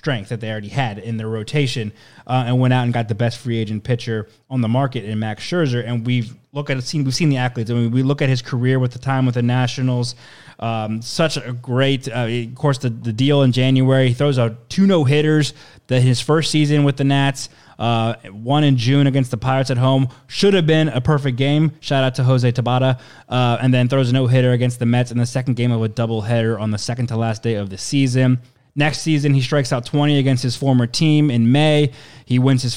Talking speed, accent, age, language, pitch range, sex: 245 wpm, American, 20-39, English, 115-140 Hz, male